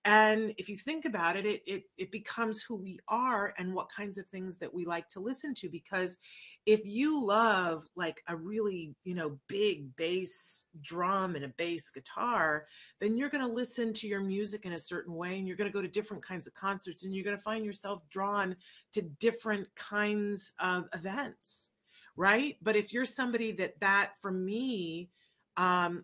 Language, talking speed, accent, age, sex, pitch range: English, 195 wpm, American, 30-49, female, 170-215 Hz